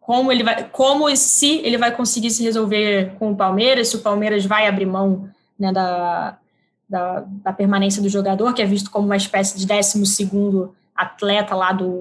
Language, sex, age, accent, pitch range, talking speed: Portuguese, female, 10-29, Brazilian, 200-235 Hz, 190 wpm